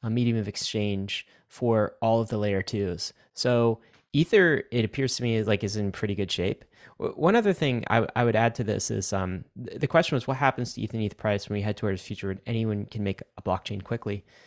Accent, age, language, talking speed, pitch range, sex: American, 20-39, English, 230 wpm, 95-120 Hz, male